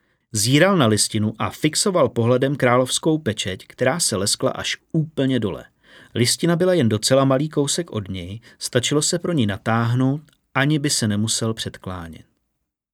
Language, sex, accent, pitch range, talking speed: Czech, male, native, 105-135 Hz, 150 wpm